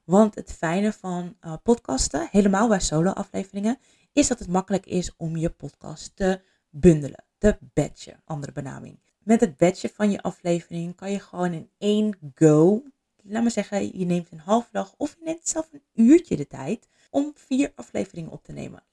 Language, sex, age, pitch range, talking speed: Dutch, female, 20-39, 170-220 Hz, 180 wpm